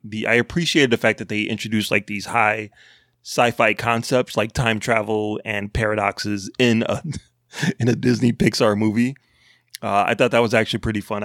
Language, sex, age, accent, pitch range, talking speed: English, male, 20-39, American, 105-125 Hz, 175 wpm